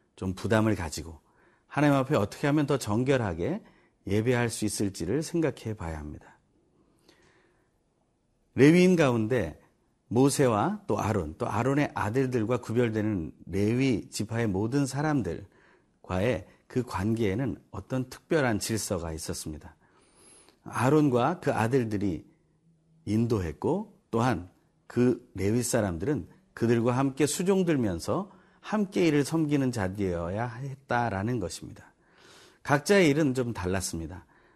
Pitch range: 100-140 Hz